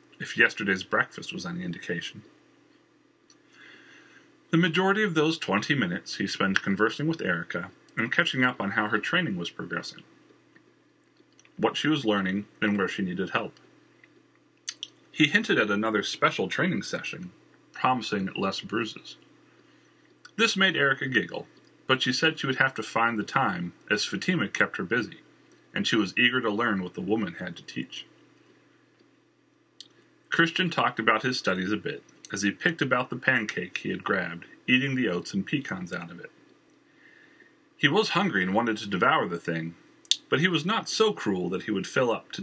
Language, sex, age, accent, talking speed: English, male, 30-49, American, 170 wpm